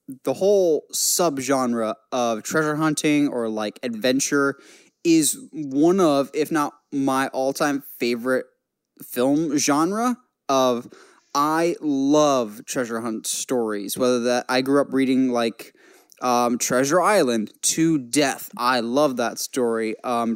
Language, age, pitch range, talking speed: English, 10-29, 125-165 Hz, 125 wpm